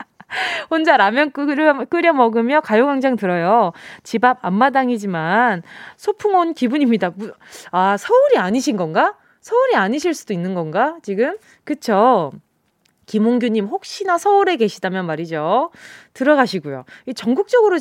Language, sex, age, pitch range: Korean, female, 20-39, 205-315 Hz